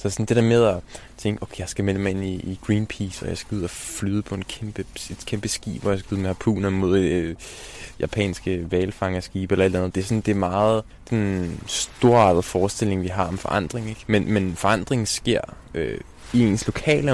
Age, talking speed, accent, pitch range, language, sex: 20-39, 215 wpm, native, 95-115 Hz, Danish, male